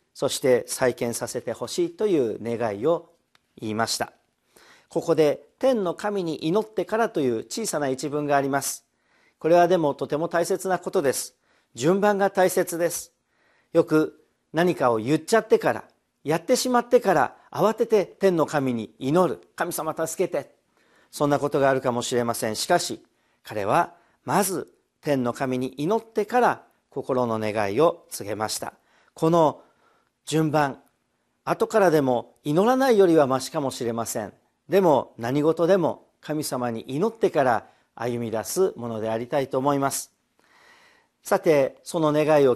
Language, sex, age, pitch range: Japanese, male, 50-69, 130-195 Hz